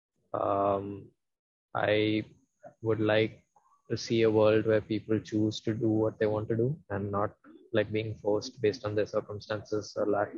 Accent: Indian